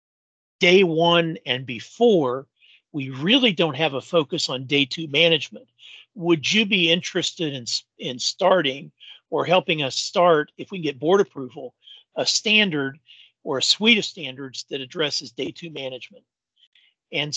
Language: English